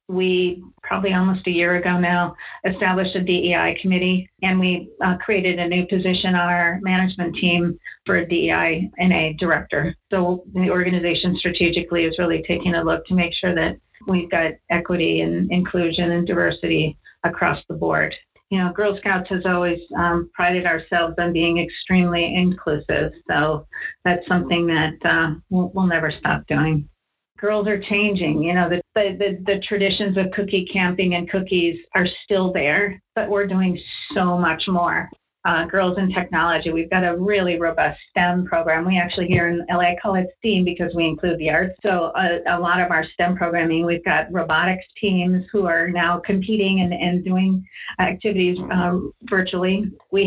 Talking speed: 170 wpm